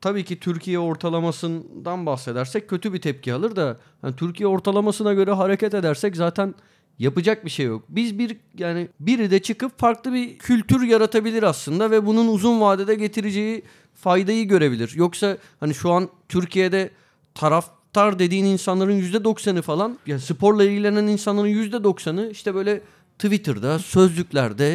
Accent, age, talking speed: native, 40-59, 140 wpm